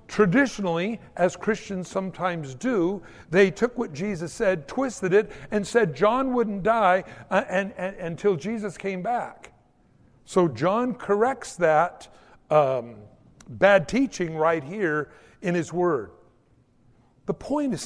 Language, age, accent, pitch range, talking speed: English, 60-79, American, 160-215 Hz, 125 wpm